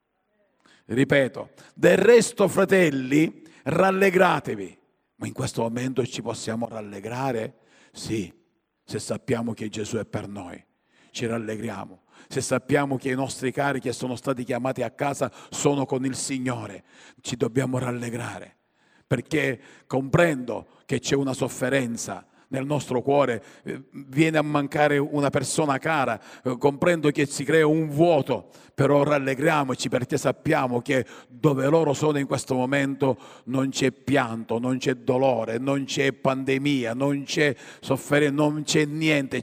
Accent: native